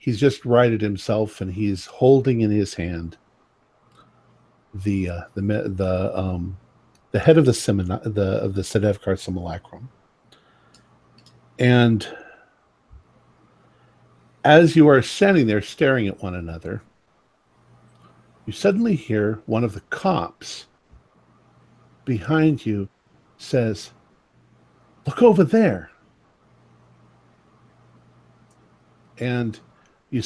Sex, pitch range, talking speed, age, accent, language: male, 95-130 Hz, 95 wpm, 50-69, American, English